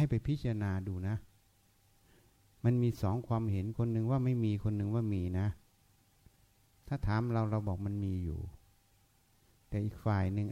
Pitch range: 100-115 Hz